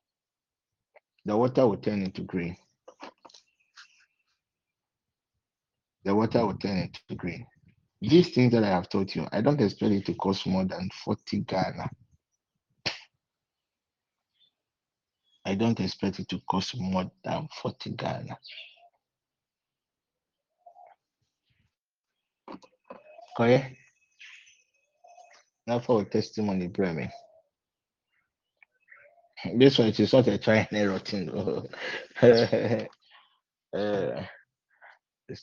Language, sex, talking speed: English, male, 100 wpm